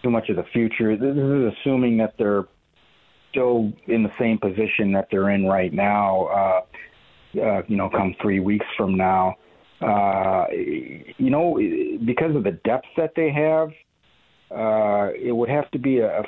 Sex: male